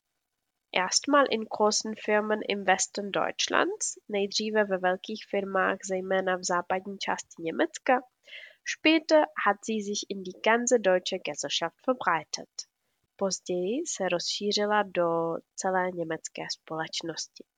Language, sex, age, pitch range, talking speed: Czech, female, 20-39, 180-225 Hz, 115 wpm